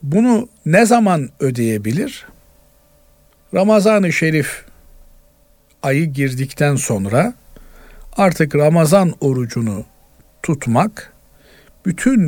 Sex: male